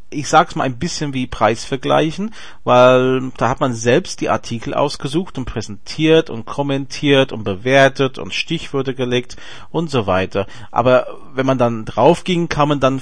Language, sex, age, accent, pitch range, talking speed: German, male, 40-59, Austrian, 115-140 Hz, 160 wpm